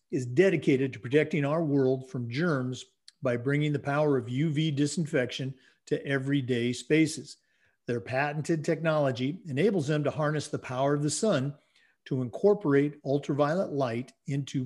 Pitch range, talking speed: 130-165 Hz, 145 wpm